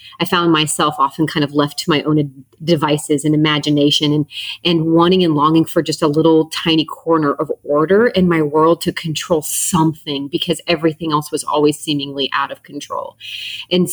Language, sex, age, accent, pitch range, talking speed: English, female, 30-49, American, 150-170 Hz, 185 wpm